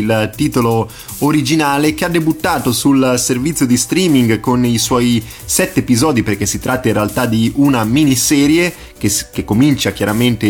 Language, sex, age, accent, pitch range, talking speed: Italian, male, 30-49, native, 110-135 Hz, 155 wpm